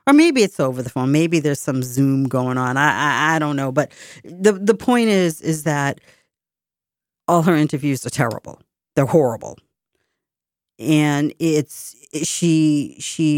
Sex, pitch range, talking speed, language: female, 145-180 Hz, 155 wpm, English